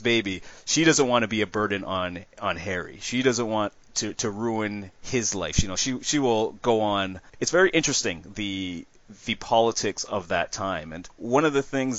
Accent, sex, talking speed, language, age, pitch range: American, male, 200 wpm, English, 30-49, 95-115 Hz